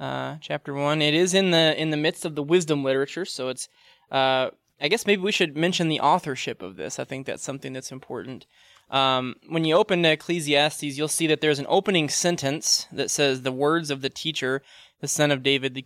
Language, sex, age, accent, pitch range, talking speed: English, male, 20-39, American, 135-155 Hz, 215 wpm